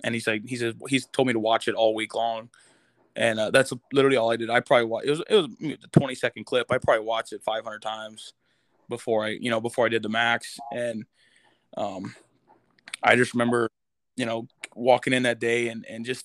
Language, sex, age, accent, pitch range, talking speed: English, male, 20-39, American, 115-130 Hz, 230 wpm